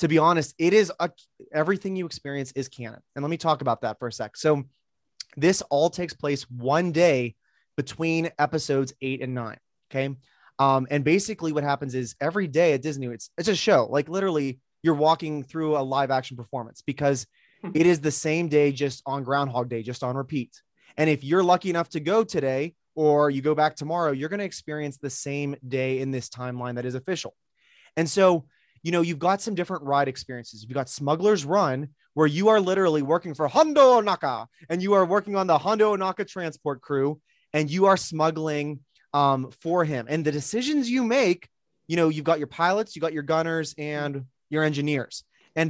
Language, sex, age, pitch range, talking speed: English, male, 20-39, 140-175 Hz, 200 wpm